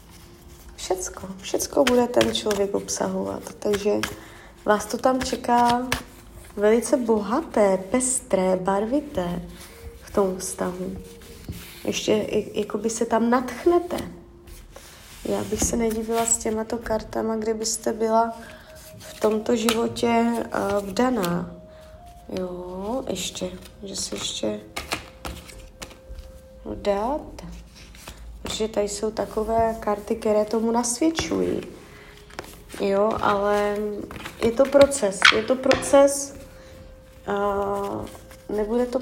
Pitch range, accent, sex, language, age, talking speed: 175-230 Hz, native, female, Czech, 20-39, 95 wpm